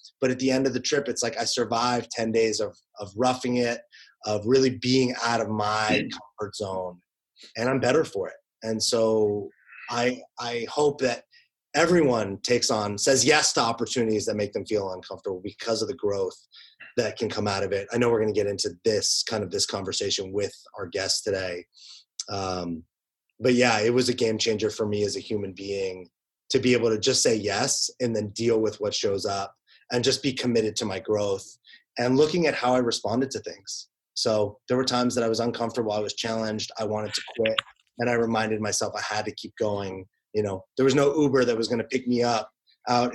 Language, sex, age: English, male, 30-49